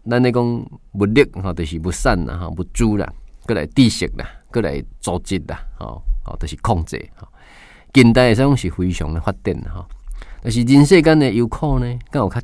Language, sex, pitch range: Chinese, male, 90-125 Hz